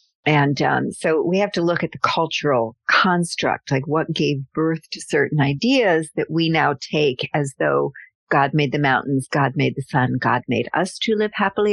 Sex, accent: female, American